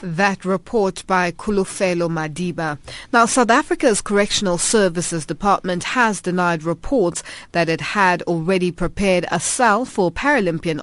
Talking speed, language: 125 wpm, English